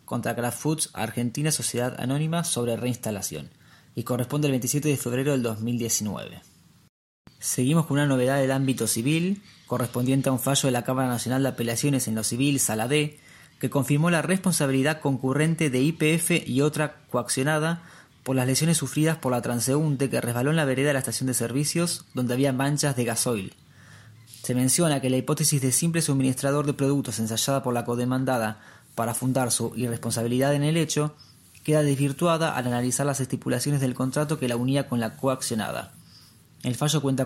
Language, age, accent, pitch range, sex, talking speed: Spanish, 20-39, Argentinian, 120-145 Hz, male, 175 wpm